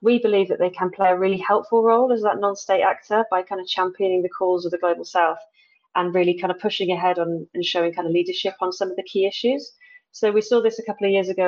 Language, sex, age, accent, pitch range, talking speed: English, female, 30-49, British, 170-200 Hz, 265 wpm